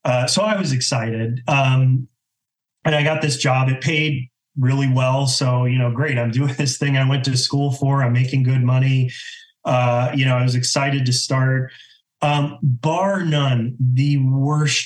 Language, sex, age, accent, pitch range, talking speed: English, male, 30-49, American, 120-145 Hz, 180 wpm